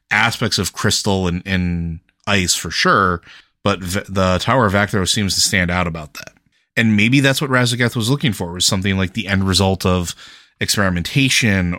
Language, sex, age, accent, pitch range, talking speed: English, male, 30-49, American, 90-110 Hz, 185 wpm